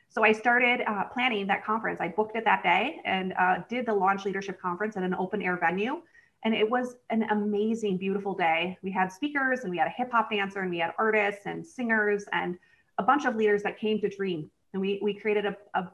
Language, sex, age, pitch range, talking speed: English, female, 30-49, 190-220 Hz, 235 wpm